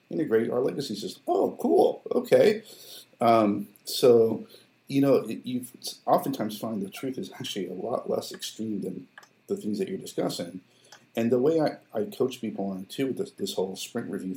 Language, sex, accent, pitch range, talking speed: English, male, American, 95-130 Hz, 185 wpm